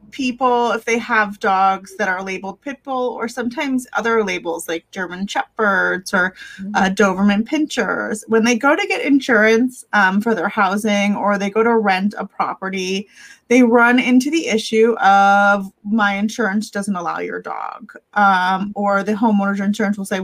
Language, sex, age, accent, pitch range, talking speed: English, female, 20-39, American, 200-240 Hz, 165 wpm